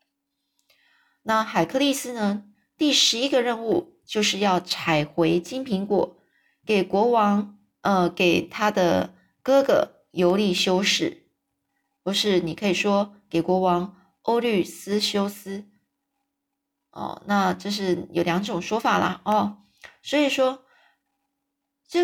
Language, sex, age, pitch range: Chinese, female, 20-39, 180-280 Hz